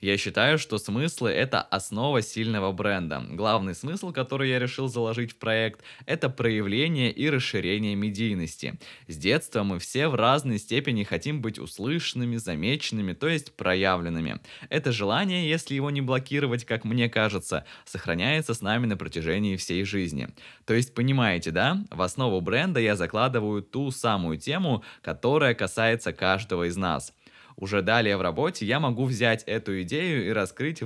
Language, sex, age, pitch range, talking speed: Russian, male, 20-39, 95-130 Hz, 155 wpm